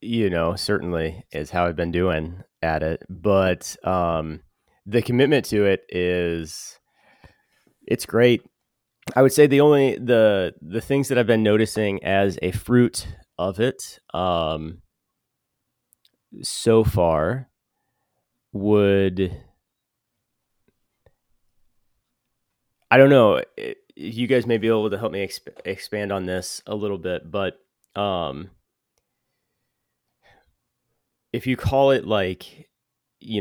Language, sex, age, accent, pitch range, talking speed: English, male, 30-49, American, 90-110 Hz, 115 wpm